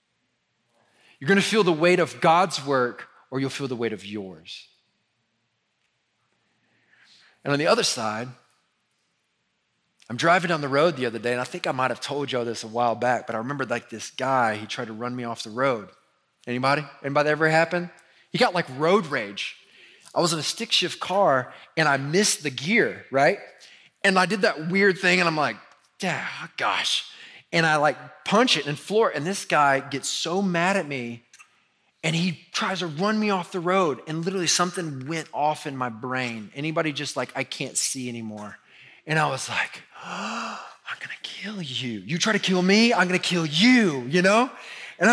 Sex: male